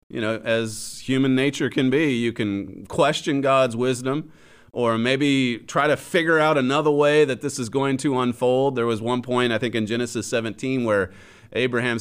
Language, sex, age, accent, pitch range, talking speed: English, male, 30-49, American, 100-135 Hz, 185 wpm